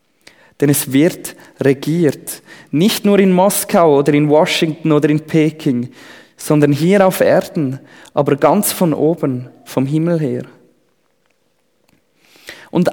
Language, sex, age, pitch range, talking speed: German, male, 20-39, 150-200 Hz, 120 wpm